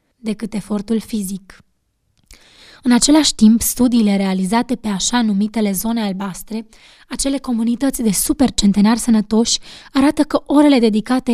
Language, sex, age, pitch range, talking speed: Romanian, female, 20-39, 205-255 Hz, 110 wpm